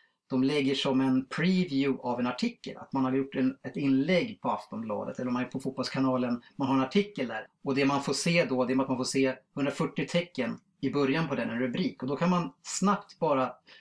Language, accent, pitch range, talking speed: Swedish, Norwegian, 130-180 Hz, 225 wpm